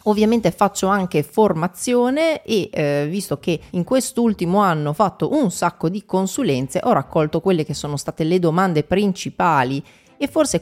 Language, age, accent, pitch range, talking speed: Italian, 30-49, native, 150-205 Hz, 160 wpm